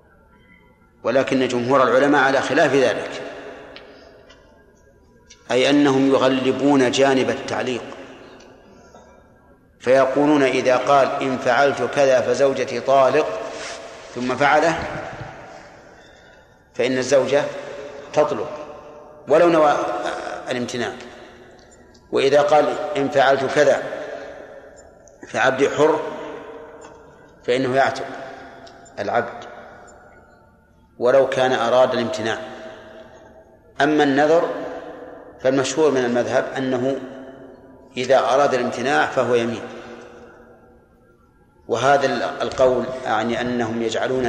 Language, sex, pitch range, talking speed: Arabic, male, 125-140 Hz, 75 wpm